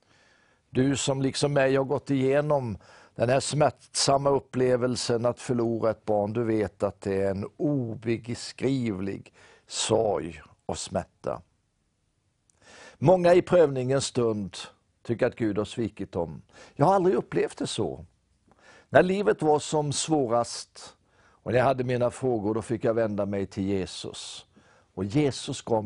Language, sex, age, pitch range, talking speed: Swedish, male, 60-79, 110-140 Hz, 145 wpm